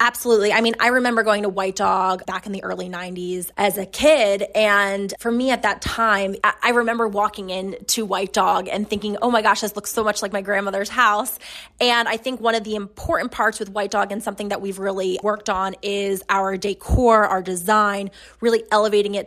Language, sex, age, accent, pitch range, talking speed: English, female, 20-39, American, 195-220 Hz, 215 wpm